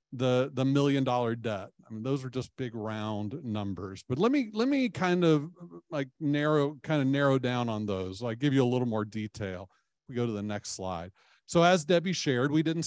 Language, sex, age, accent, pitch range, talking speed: English, male, 50-69, American, 110-140 Hz, 220 wpm